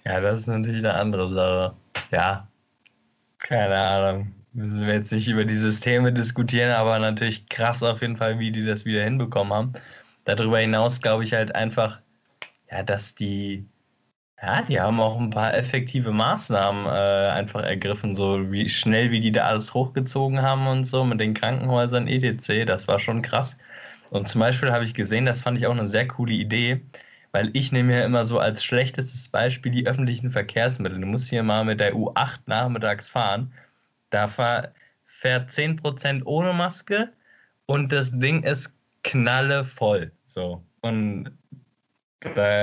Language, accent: German, German